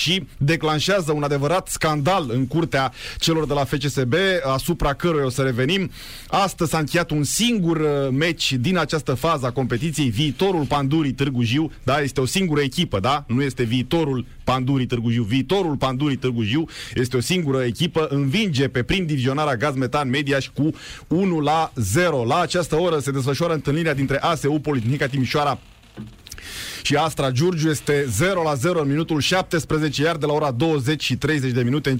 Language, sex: Romanian, male